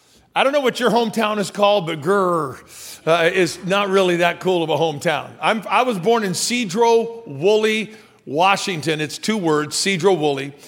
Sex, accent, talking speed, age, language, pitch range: male, American, 180 wpm, 50-69, English, 170-240 Hz